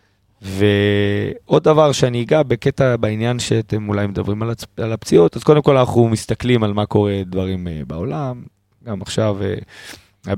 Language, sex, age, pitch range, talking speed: Hebrew, male, 20-39, 100-115 Hz, 140 wpm